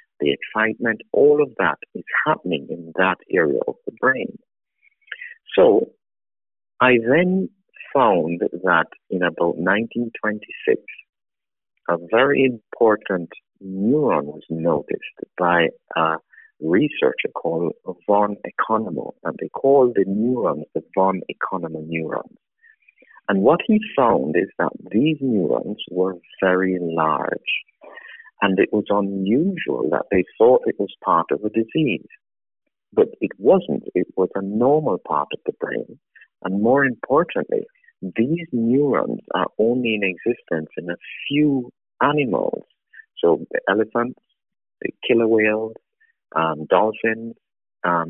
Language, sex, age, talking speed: English, male, 50-69, 120 wpm